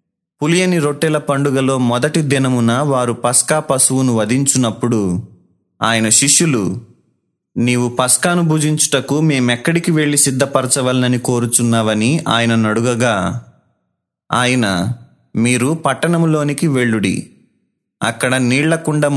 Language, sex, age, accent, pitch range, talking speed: Telugu, male, 20-39, native, 120-145 Hz, 80 wpm